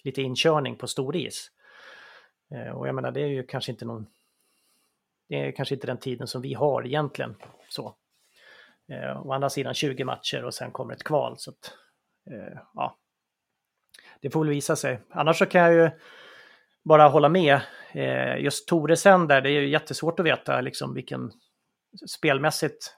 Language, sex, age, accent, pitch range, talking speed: English, male, 30-49, Swedish, 130-155 Hz, 175 wpm